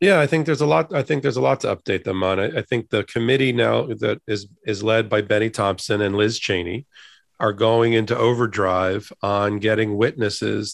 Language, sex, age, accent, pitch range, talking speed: English, male, 40-59, American, 105-130 Hz, 210 wpm